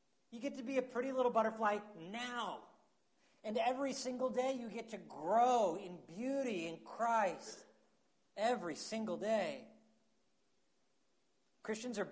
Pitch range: 180-230 Hz